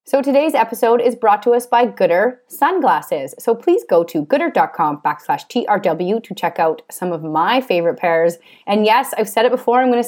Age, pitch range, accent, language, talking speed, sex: 30-49, 165-240 Hz, American, English, 200 wpm, female